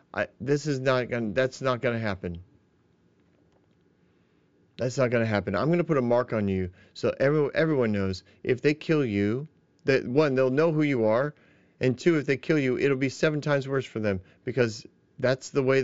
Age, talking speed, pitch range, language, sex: 40-59, 210 wpm, 110-150 Hz, English, male